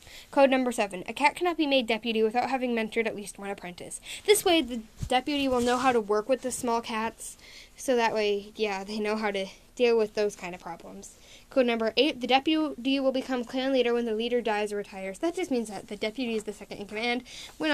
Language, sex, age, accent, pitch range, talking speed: English, female, 10-29, American, 210-260 Hz, 235 wpm